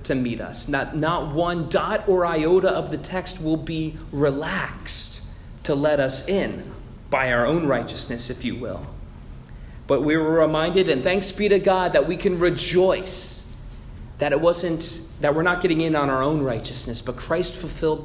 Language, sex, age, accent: English, male, 30-49, American